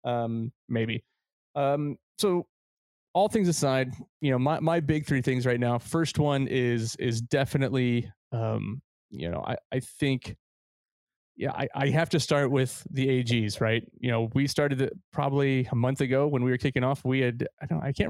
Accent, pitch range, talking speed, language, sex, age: American, 120-145 Hz, 185 wpm, English, male, 30-49